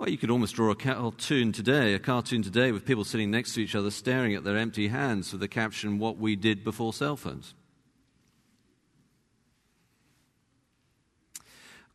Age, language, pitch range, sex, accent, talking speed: 50-69, English, 100-120 Hz, male, British, 165 wpm